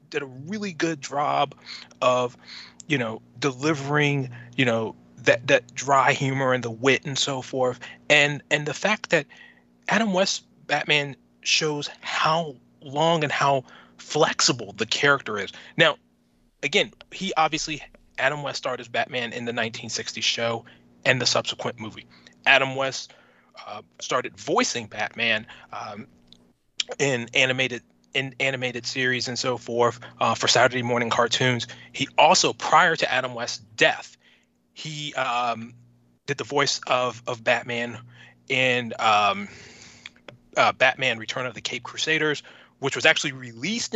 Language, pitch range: English, 115-145 Hz